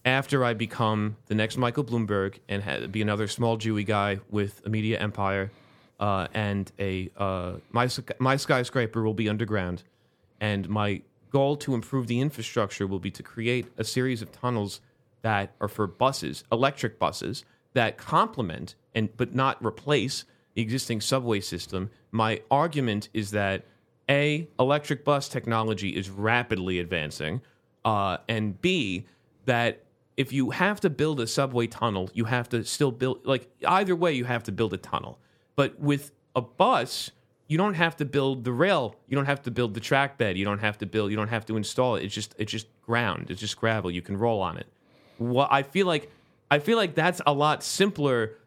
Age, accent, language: 30-49, American, English